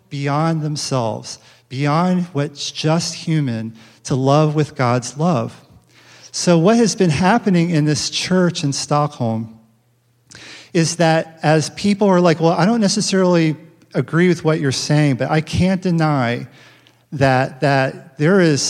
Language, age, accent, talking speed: English, 40-59, American, 140 wpm